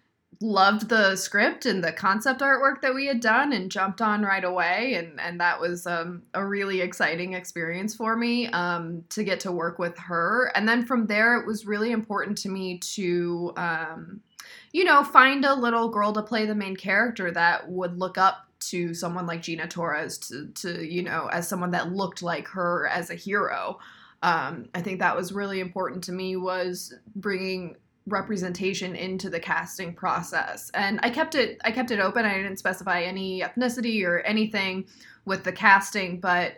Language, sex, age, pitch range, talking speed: English, female, 20-39, 180-215 Hz, 185 wpm